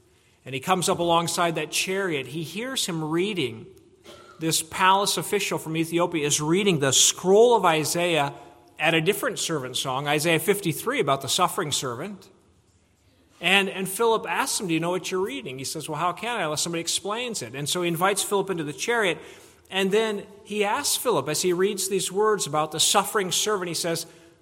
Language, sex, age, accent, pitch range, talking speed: English, male, 40-59, American, 165-220 Hz, 190 wpm